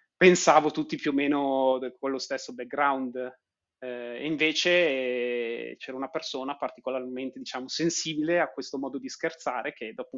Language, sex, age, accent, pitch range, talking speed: Italian, male, 30-49, native, 130-175 Hz, 145 wpm